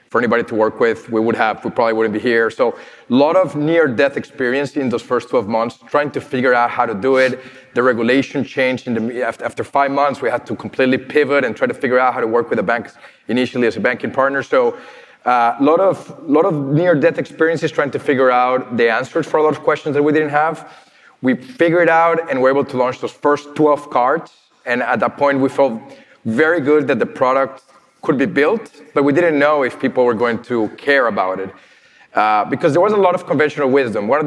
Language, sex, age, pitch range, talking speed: English, male, 30-49, 125-150 Hz, 235 wpm